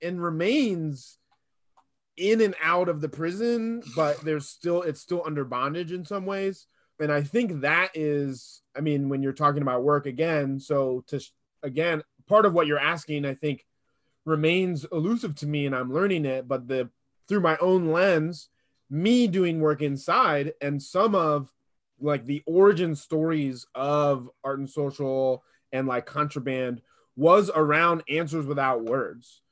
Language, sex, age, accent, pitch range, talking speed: English, male, 20-39, American, 130-160 Hz, 160 wpm